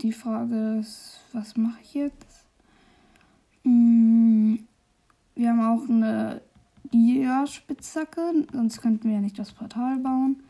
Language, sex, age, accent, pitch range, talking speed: German, female, 10-29, German, 225-265 Hz, 125 wpm